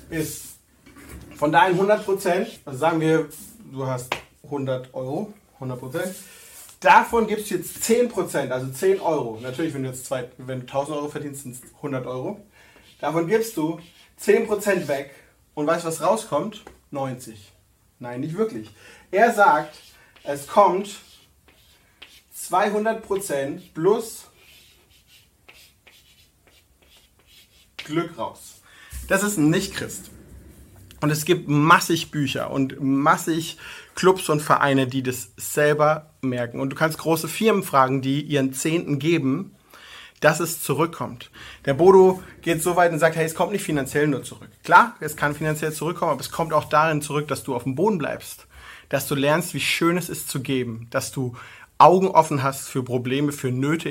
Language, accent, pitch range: German, German, 130-170 Hz